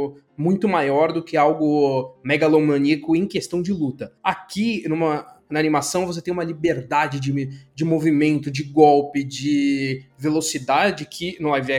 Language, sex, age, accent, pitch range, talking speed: Portuguese, male, 20-39, Brazilian, 145-195 Hz, 135 wpm